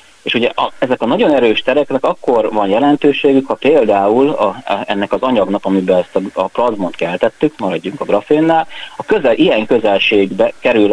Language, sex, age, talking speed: Hungarian, male, 30-49, 175 wpm